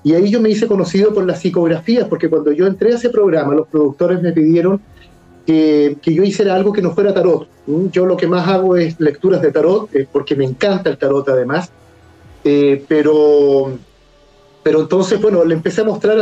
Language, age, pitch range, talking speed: Spanish, 40-59, 150-195 Hz, 200 wpm